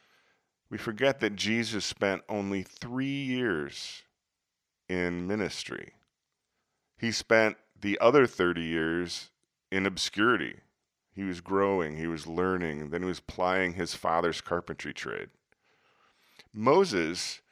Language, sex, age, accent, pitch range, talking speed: English, male, 40-59, American, 90-110 Hz, 115 wpm